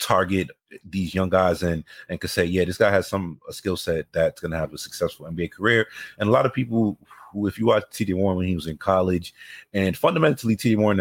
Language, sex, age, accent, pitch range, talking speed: English, male, 30-49, American, 85-105 Hz, 240 wpm